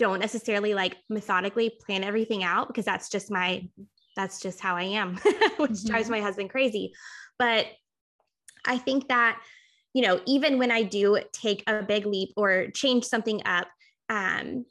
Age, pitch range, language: 10-29, 190-235 Hz, English